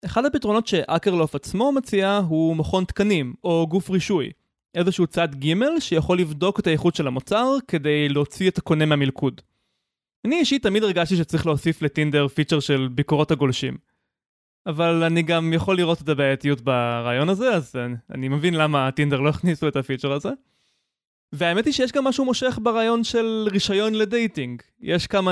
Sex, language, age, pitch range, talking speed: male, Hebrew, 20-39, 145-195 Hz, 160 wpm